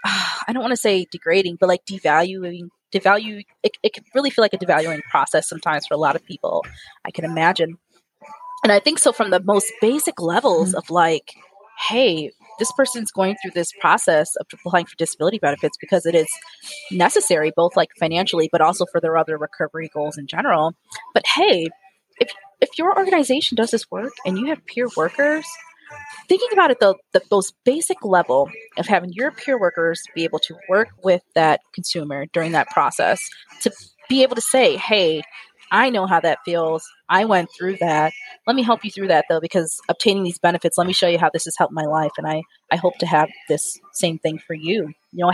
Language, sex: English, female